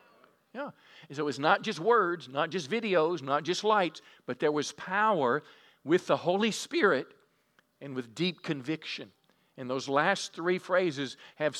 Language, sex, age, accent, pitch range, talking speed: English, male, 50-69, American, 135-170 Hz, 165 wpm